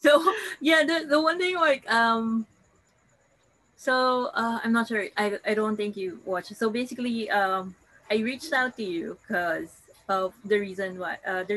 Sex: female